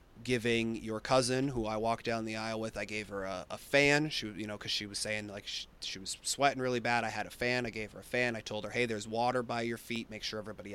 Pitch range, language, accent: 110-150 Hz, English, American